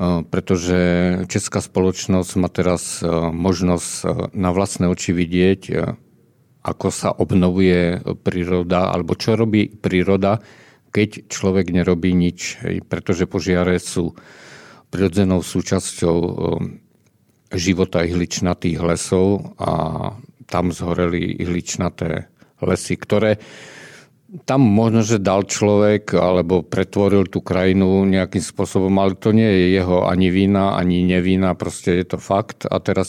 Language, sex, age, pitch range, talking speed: Czech, male, 50-69, 90-100 Hz, 110 wpm